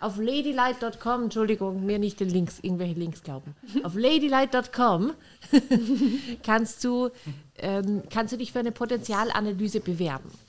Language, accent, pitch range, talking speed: German, German, 180-245 Hz, 125 wpm